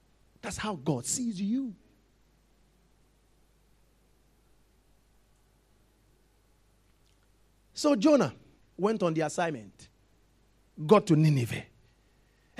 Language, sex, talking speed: English, male, 65 wpm